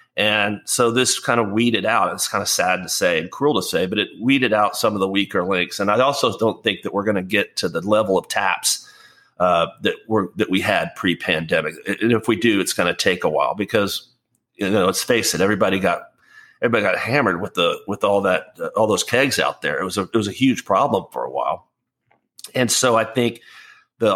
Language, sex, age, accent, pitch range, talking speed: English, male, 40-59, American, 100-125 Hz, 240 wpm